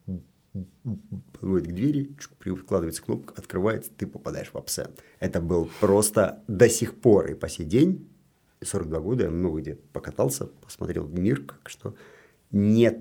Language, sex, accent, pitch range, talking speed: Russian, male, native, 90-120 Hz, 150 wpm